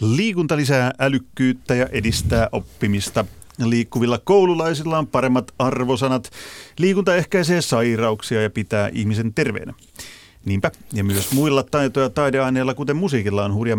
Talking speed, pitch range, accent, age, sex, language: 125 wpm, 105-135 Hz, native, 30-49, male, Finnish